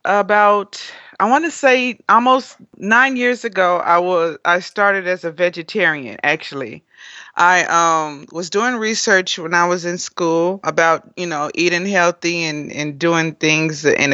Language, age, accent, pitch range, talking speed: English, 30-49, American, 155-185 Hz, 155 wpm